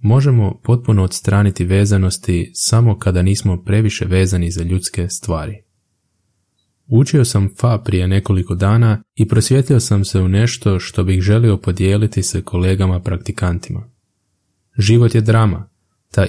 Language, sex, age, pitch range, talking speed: Croatian, male, 20-39, 95-110 Hz, 130 wpm